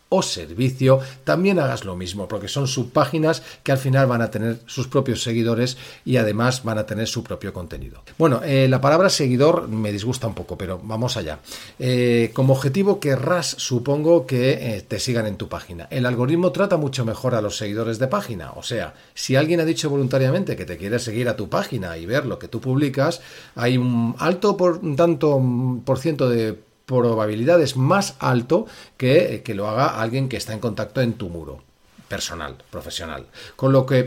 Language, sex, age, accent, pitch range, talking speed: Spanish, male, 40-59, Spanish, 110-135 Hz, 195 wpm